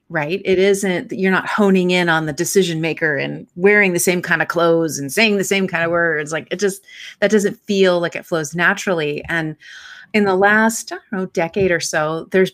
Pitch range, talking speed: 165-200 Hz, 205 wpm